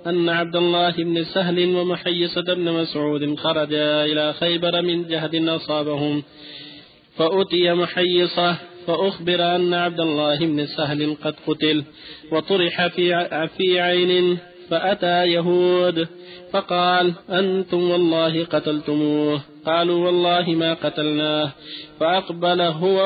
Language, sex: Arabic, male